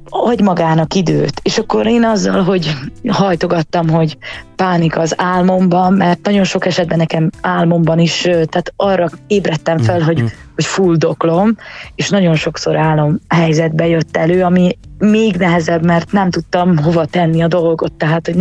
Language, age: Hungarian, 20-39